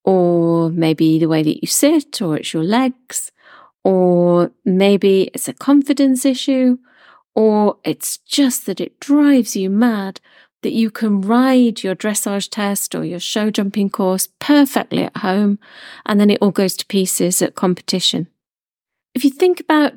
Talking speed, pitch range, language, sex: 160 wpm, 185-245 Hz, English, female